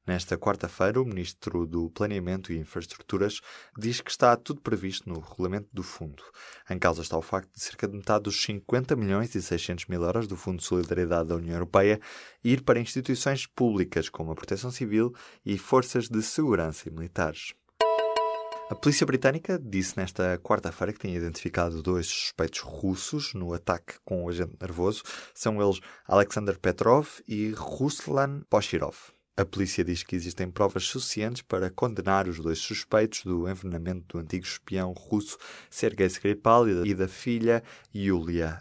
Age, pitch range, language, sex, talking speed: 20-39, 90-120 Hz, Portuguese, male, 160 wpm